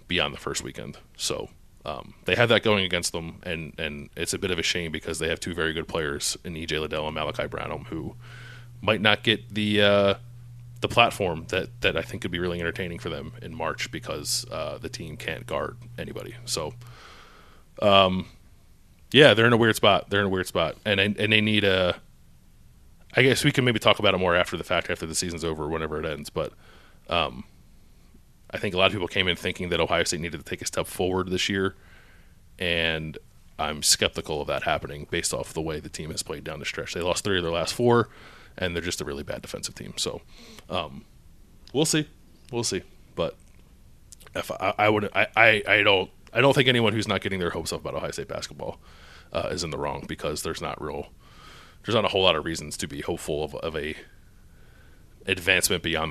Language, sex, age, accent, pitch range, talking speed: English, male, 30-49, American, 80-110 Hz, 220 wpm